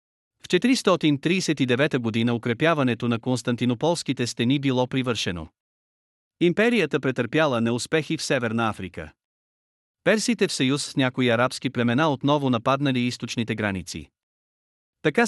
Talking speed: 105 wpm